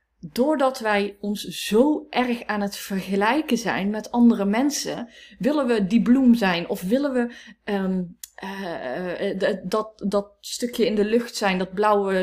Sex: female